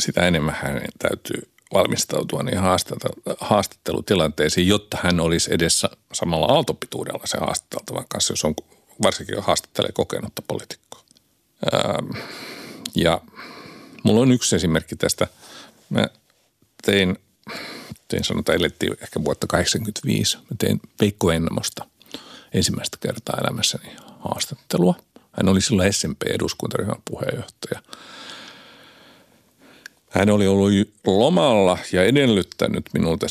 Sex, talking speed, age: male, 95 wpm, 50-69